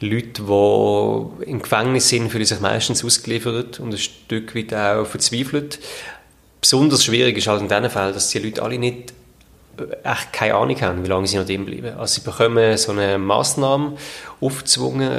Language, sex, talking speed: German, male, 170 wpm